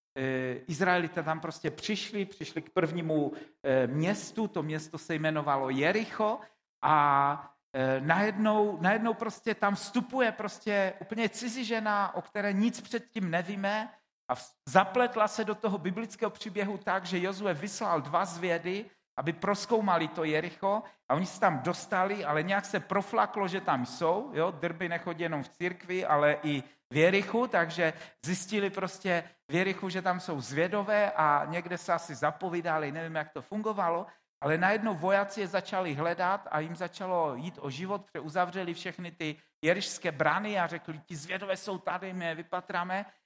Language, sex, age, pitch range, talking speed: Czech, male, 50-69, 160-205 Hz, 155 wpm